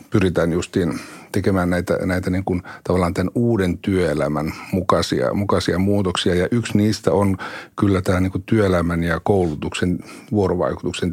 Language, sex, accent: Finnish, male, native